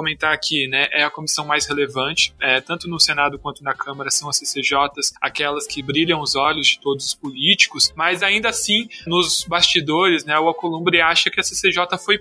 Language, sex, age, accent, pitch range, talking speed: Portuguese, male, 20-39, Brazilian, 145-180 Hz, 195 wpm